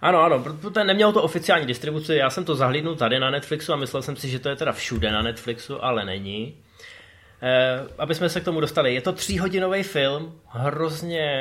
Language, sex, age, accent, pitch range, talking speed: Czech, male, 20-39, native, 125-160 Hz, 210 wpm